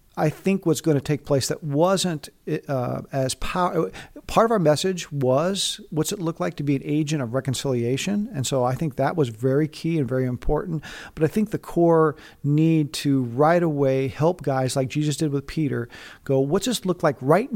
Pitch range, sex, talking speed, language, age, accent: 135-160 Hz, male, 200 wpm, English, 50-69, American